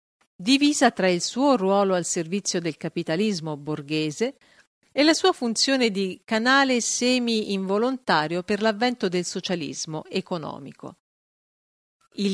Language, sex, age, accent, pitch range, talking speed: Italian, female, 50-69, native, 170-230 Hz, 115 wpm